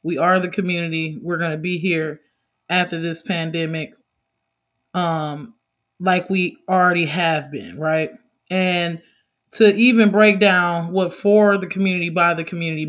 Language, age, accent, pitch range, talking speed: English, 20-39, American, 175-210 Hz, 145 wpm